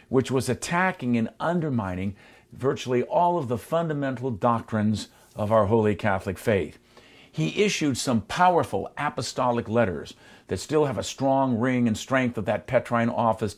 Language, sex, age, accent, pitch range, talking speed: English, male, 50-69, American, 110-140 Hz, 150 wpm